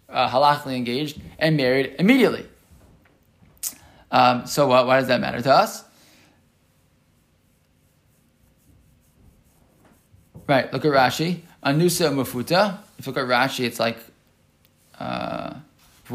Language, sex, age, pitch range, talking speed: English, male, 20-39, 130-170 Hz, 110 wpm